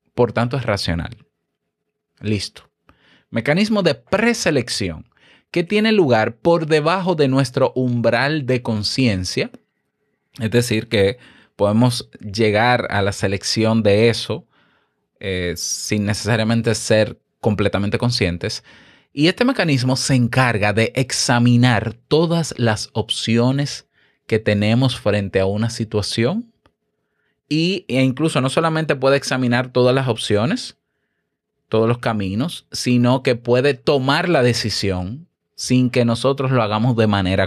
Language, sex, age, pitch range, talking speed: Spanish, male, 30-49, 105-135 Hz, 120 wpm